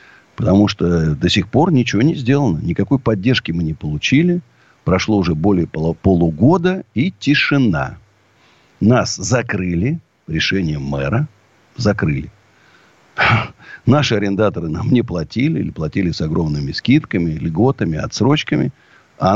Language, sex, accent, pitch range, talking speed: Russian, male, native, 100-150 Hz, 115 wpm